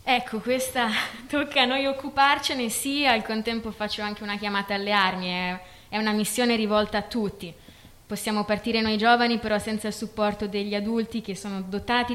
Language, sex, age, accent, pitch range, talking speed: Italian, female, 20-39, native, 205-245 Hz, 170 wpm